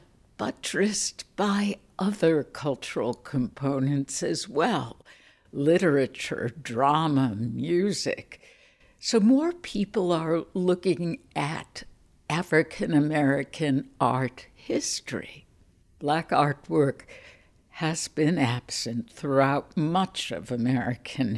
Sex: female